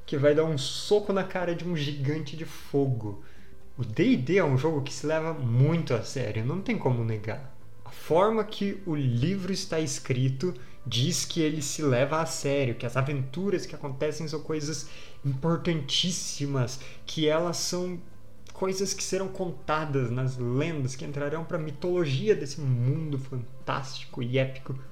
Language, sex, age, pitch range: Portuguese, male, 20-39, 130-160 Hz